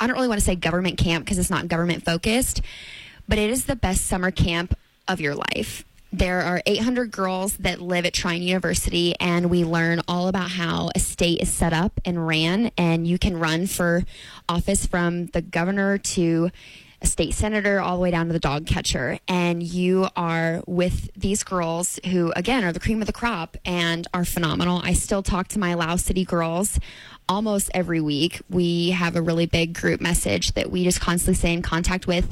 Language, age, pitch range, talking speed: English, 20-39, 170-190 Hz, 200 wpm